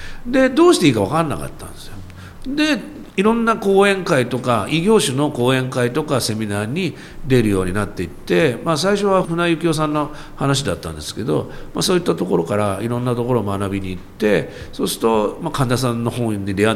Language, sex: Japanese, male